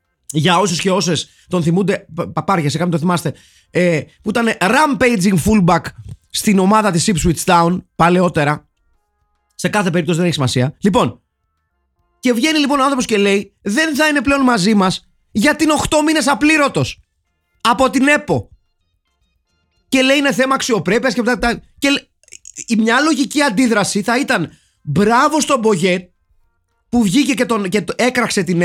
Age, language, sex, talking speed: 30-49, Greek, male, 150 wpm